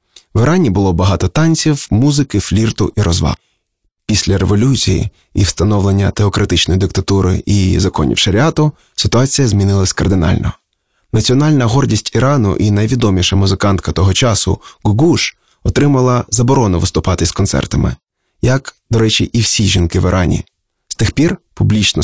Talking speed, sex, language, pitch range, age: 130 wpm, male, Ukrainian, 95-120 Hz, 20-39